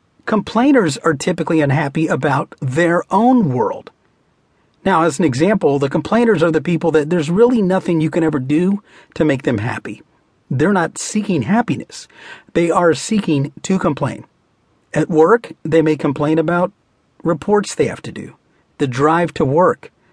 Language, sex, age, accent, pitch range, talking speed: English, male, 40-59, American, 150-195 Hz, 160 wpm